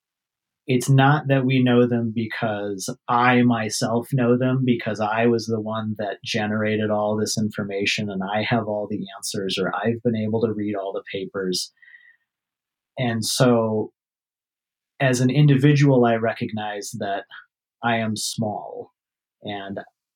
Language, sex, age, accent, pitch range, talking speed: English, male, 30-49, American, 105-125 Hz, 145 wpm